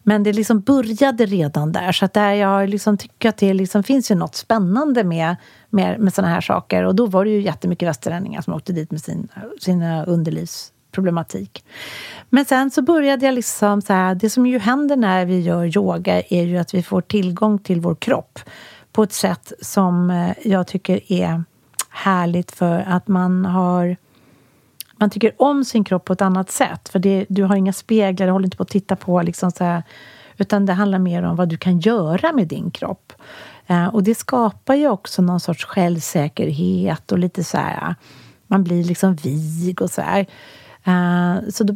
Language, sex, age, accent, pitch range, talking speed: Swedish, female, 40-59, native, 175-220 Hz, 195 wpm